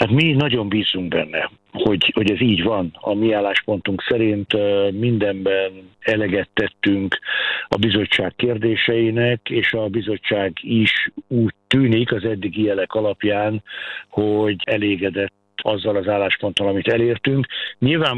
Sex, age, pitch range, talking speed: male, 60-79, 105-115 Hz, 125 wpm